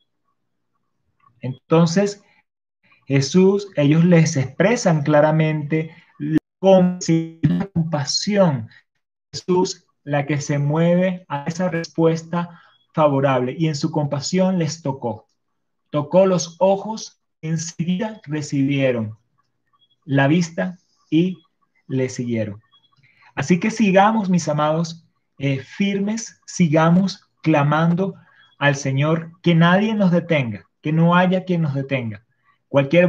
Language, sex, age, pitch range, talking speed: Spanish, male, 30-49, 140-180 Hz, 100 wpm